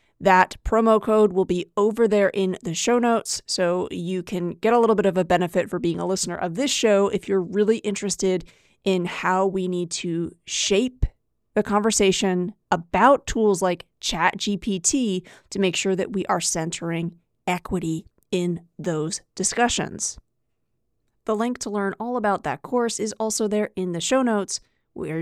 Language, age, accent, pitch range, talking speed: English, 30-49, American, 180-220 Hz, 170 wpm